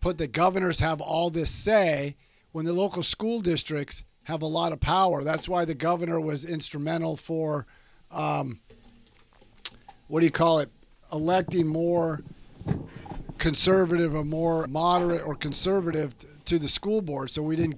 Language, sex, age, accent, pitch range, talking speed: English, male, 50-69, American, 150-180 Hz, 150 wpm